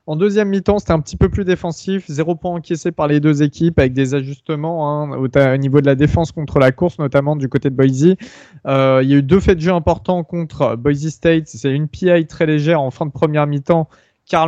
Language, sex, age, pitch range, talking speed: French, male, 20-39, 140-170 Hz, 235 wpm